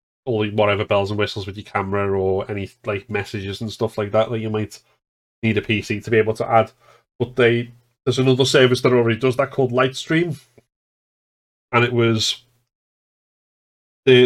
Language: English